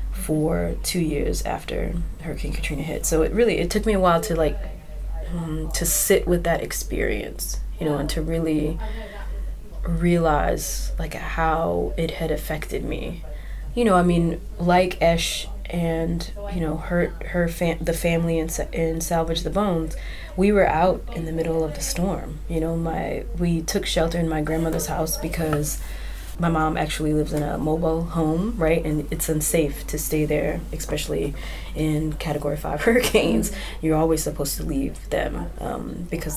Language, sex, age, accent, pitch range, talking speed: English, female, 20-39, American, 150-170 Hz, 170 wpm